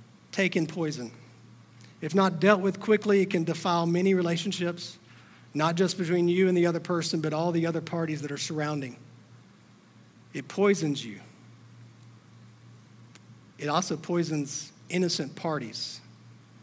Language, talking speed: English, 135 wpm